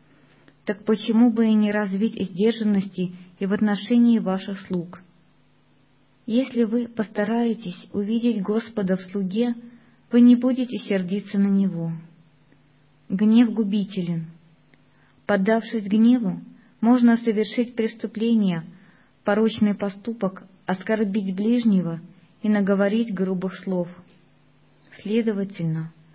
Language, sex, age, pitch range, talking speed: Russian, female, 20-39, 180-225 Hz, 95 wpm